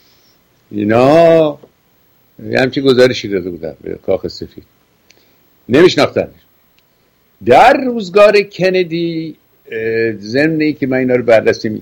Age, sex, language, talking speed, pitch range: 60-79, male, Persian, 100 wpm, 100-135 Hz